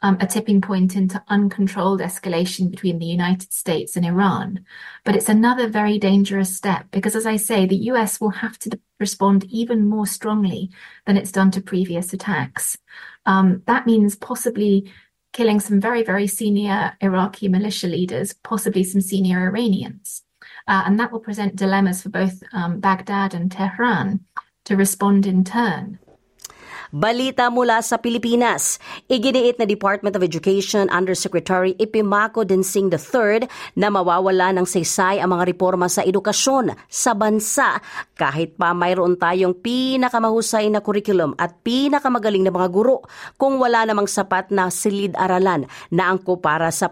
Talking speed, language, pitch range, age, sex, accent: 150 wpm, Filipino, 185-215 Hz, 30-49, female, British